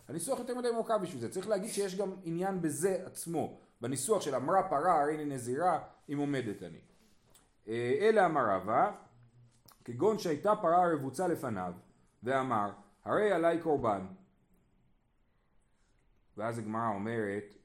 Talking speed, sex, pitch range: 130 wpm, male, 125-175 Hz